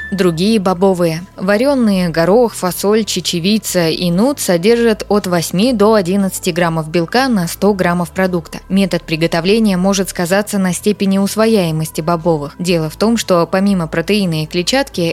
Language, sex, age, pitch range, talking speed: Russian, female, 20-39, 175-215 Hz, 140 wpm